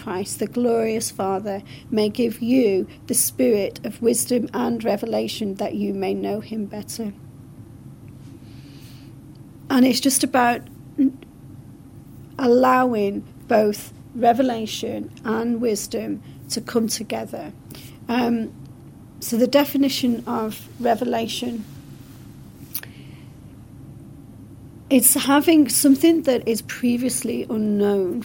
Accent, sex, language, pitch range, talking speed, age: British, female, English, 210-250 Hz, 90 wpm, 40-59